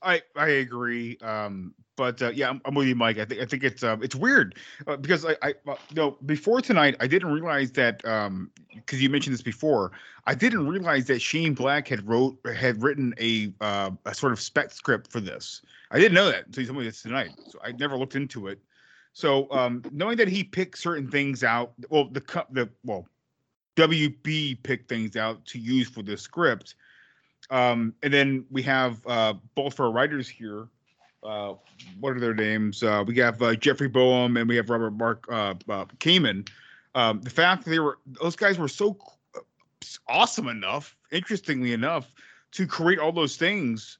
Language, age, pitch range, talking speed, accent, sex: English, 30-49, 115-145 Hz, 195 wpm, American, male